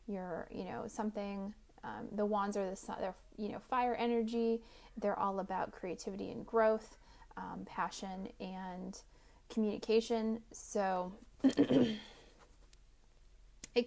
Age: 30-49